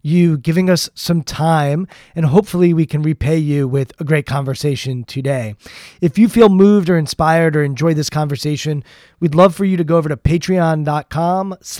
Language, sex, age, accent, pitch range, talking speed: English, male, 20-39, American, 150-185 Hz, 180 wpm